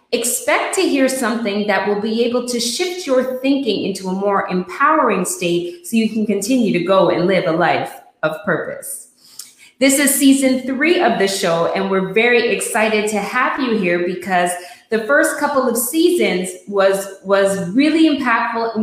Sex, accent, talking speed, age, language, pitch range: female, American, 175 wpm, 20-39, English, 185-255 Hz